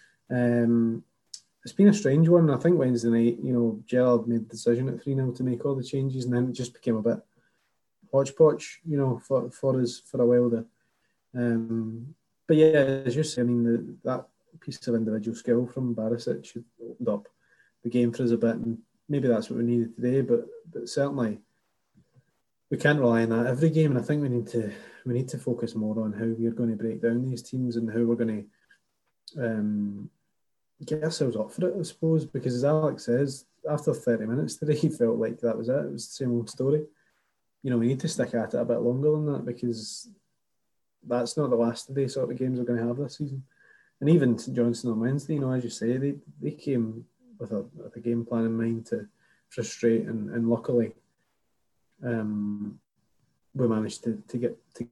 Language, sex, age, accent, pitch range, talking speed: English, male, 20-39, British, 115-135 Hz, 215 wpm